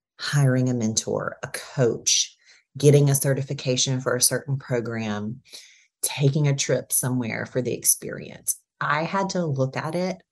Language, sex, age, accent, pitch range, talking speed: English, female, 30-49, American, 125-155 Hz, 145 wpm